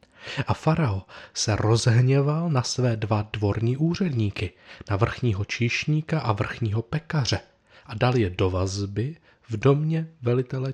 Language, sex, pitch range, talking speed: Czech, male, 105-135 Hz, 130 wpm